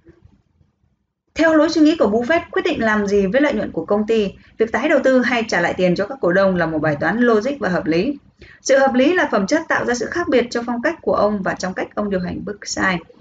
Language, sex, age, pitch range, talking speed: Vietnamese, female, 20-39, 200-270 Hz, 275 wpm